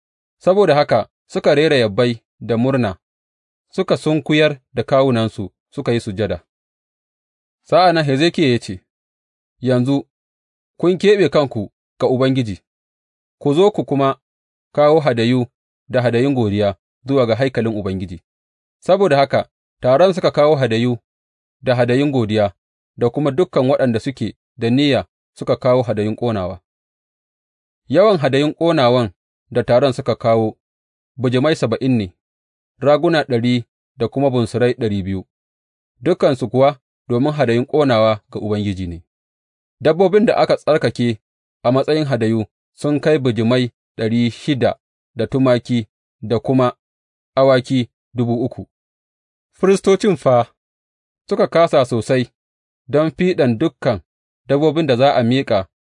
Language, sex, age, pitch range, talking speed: English, male, 30-49, 95-140 Hz, 120 wpm